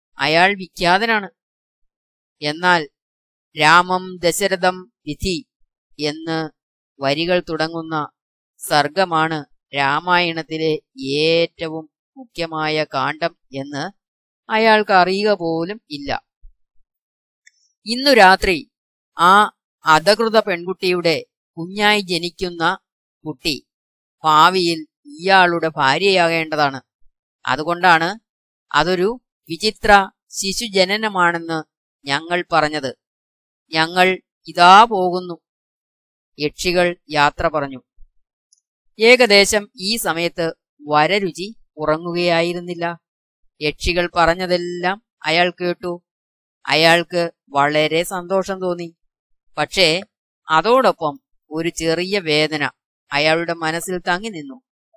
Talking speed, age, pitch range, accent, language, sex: 70 wpm, 20-39, 155-190 Hz, native, Malayalam, female